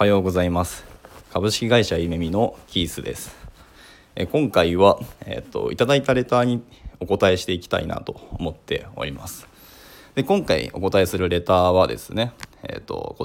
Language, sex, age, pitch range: Japanese, male, 20-39, 90-135 Hz